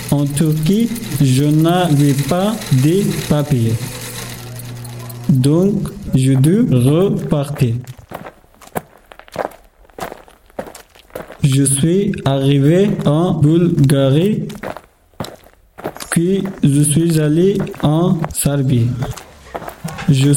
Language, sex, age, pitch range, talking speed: French, male, 50-69, 140-180 Hz, 70 wpm